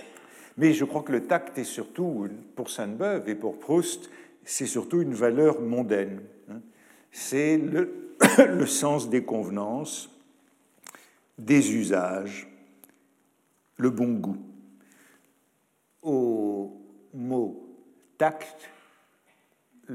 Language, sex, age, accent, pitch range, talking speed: French, male, 60-79, French, 110-155 Hz, 100 wpm